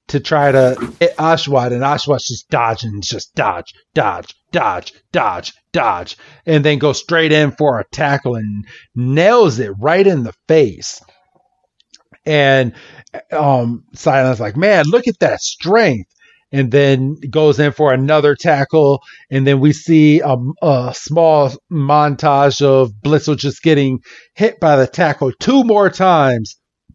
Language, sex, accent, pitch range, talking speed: English, male, American, 130-155 Hz, 145 wpm